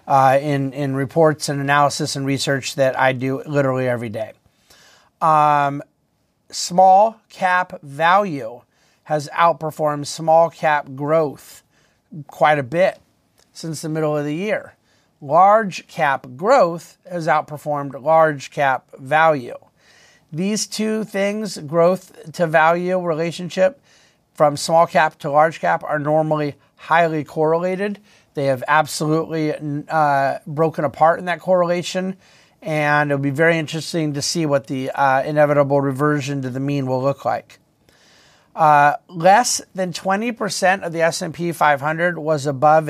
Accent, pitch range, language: American, 140-170 Hz, English